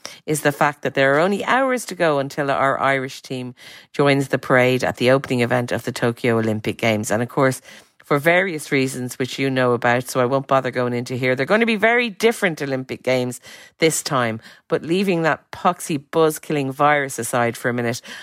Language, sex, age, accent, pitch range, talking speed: English, female, 50-69, Irish, 125-160 Hz, 210 wpm